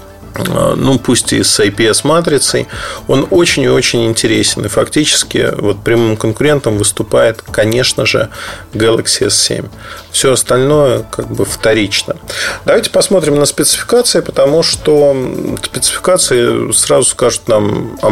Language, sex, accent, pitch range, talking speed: Russian, male, native, 115-155 Hz, 120 wpm